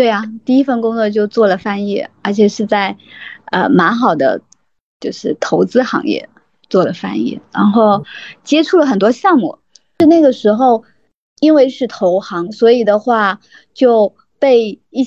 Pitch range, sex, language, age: 215-290 Hz, female, Chinese, 20-39